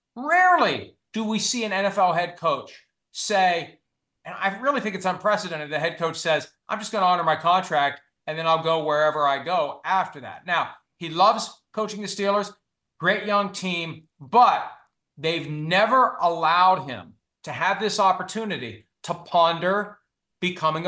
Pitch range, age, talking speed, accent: 155-200 Hz, 40-59, 160 wpm, American